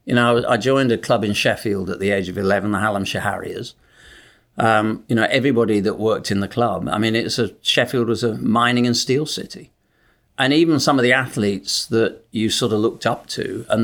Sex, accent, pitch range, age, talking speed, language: male, British, 105-120 Hz, 50-69, 215 wpm, English